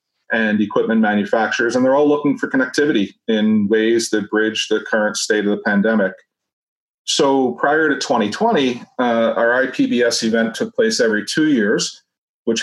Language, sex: English, male